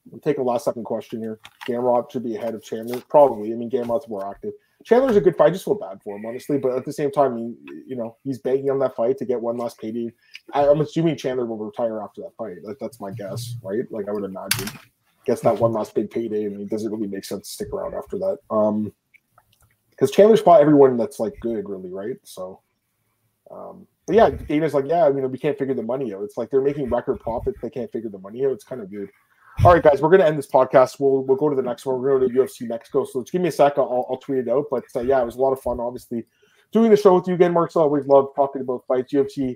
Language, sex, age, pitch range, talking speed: English, male, 20-39, 115-145 Hz, 275 wpm